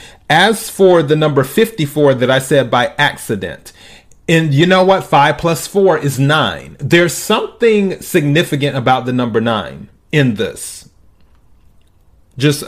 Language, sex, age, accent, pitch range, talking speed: English, male, 30-49, American, 120-160 Hz, 135 wpm